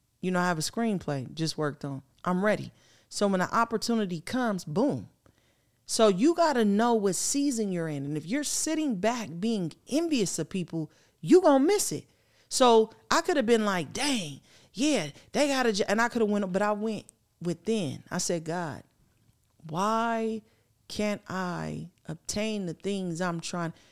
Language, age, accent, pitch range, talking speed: English, 40-59, American, 160-225 Hz, 180 wpm